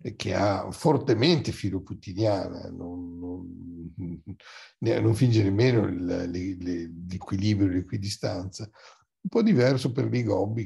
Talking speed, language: 105 wpm, Italian